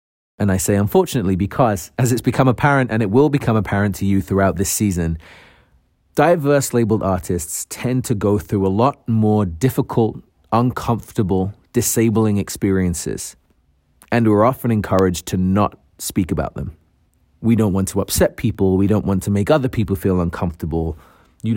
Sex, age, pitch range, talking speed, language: male, 30-49, 90-120 Hz, 160 wpm, English